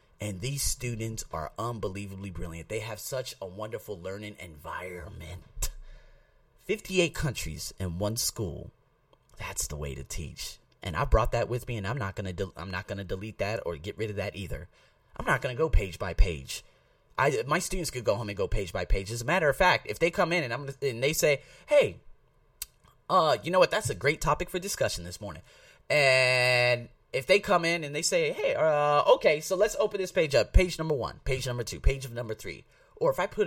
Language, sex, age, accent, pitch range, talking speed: English, male, 30-49, American, 95-145 Hz, 210 wpm